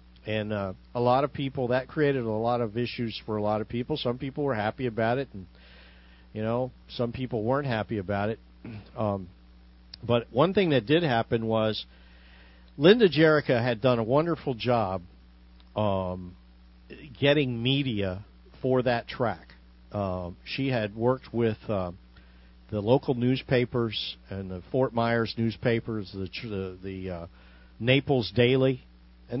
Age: 50-69